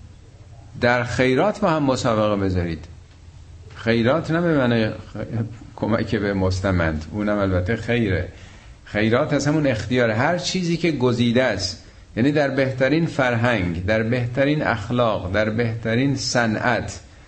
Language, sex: Persian, male